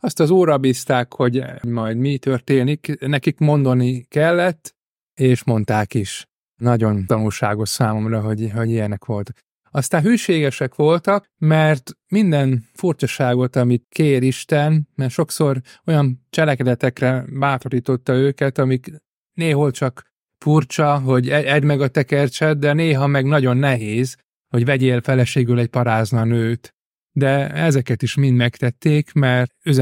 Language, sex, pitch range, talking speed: Hungarian, male, 120-150 Hz, 125 wpm